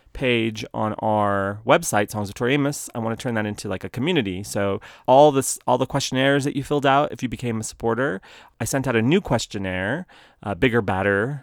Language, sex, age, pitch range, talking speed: English, male, 30-49, 105-135 Hz, 215 wpm